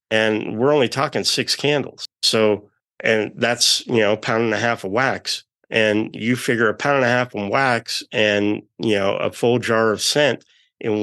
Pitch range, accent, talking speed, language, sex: 110-165 Hz, American, 200 wpm, English, male